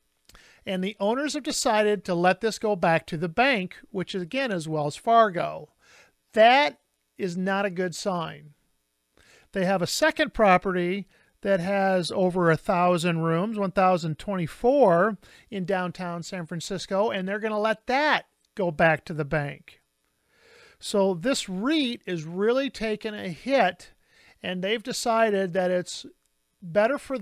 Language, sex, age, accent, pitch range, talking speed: English, male, 50-69, American, 175-215 Hz, 150 wpm